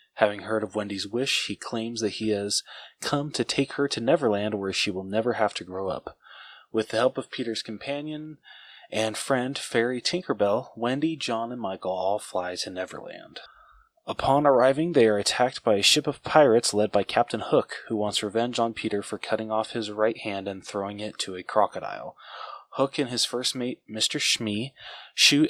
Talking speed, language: 190 wpm, English